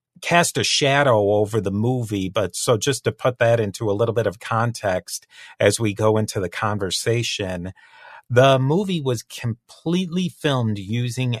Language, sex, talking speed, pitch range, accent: English, male, 160 wpm, 100-125 Hz, American